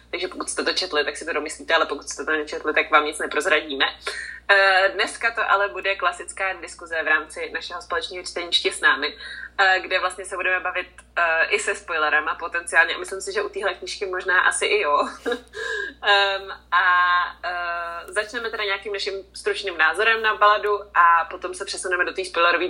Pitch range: 175-225 Hz